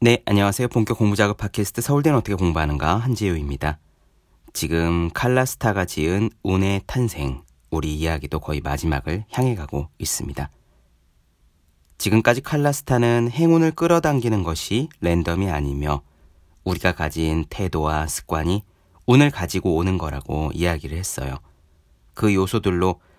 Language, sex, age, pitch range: Korean, male, 30-49, 75-115 Hz